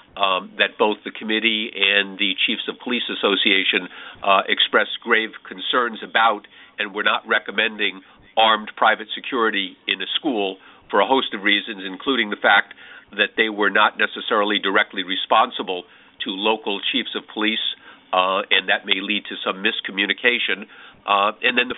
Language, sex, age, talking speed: English, male, 50-69, 160 wpm